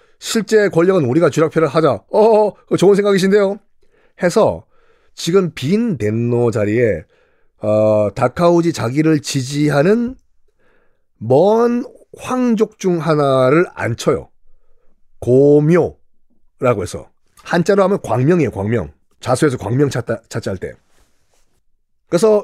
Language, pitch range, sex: Korean, 145-230 Hz, male